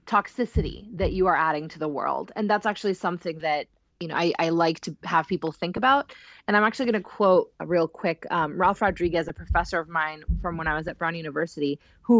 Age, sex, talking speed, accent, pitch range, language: 30-49, female, 230 wpm, American, 165-220 Hz, English